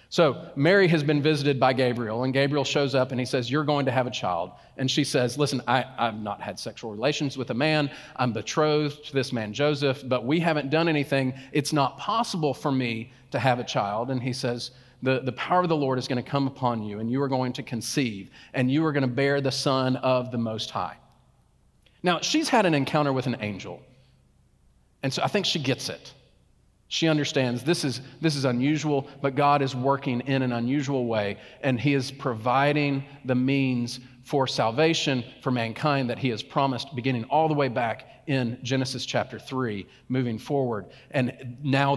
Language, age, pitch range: English, 40-59, 125-145 Hz